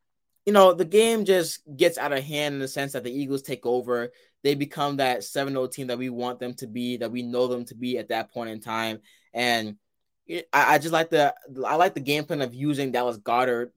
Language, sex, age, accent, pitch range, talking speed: English, male, 20-39, American, 125-165 Hz, 235 wpm